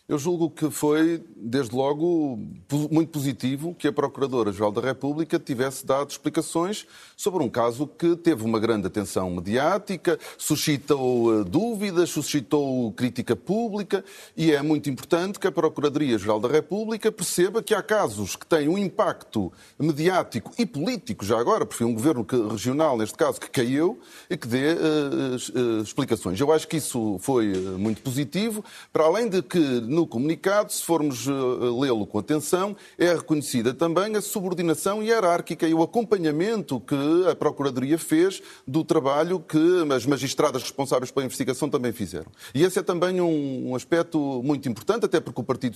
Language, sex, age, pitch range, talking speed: Portuguese, male, 30-49, 130-175 Hz, 160 wpm